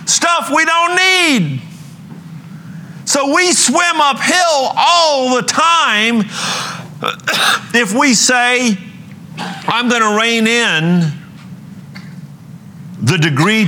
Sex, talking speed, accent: male, 90 wpm, American